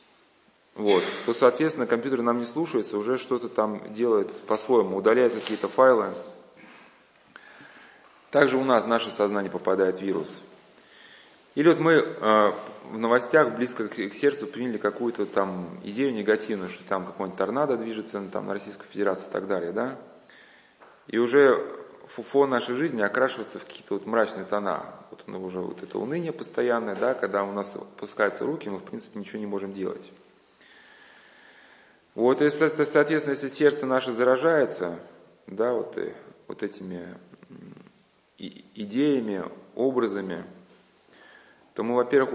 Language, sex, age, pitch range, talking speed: Russian, male, 20-39, 105-130 Hz, 140 wpm